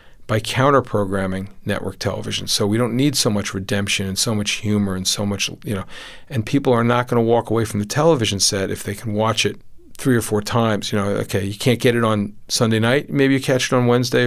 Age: 50-69